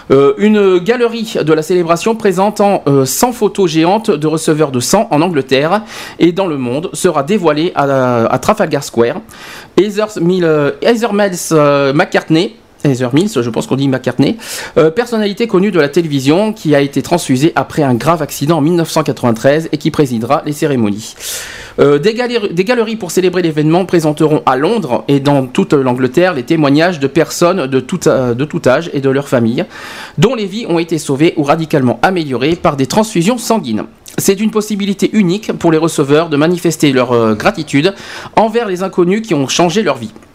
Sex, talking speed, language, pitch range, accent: male, 180 wpm, French, 140-190 Hz, French